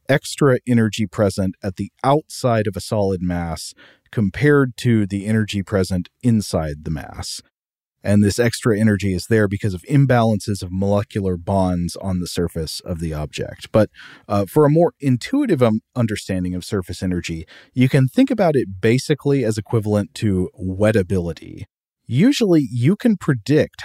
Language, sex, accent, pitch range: English, male, American, 95-120 Hz